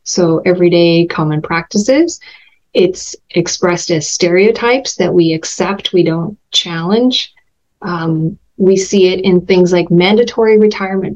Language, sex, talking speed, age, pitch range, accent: English, female, 125 wpm, 30-49, 175-210 Hz, American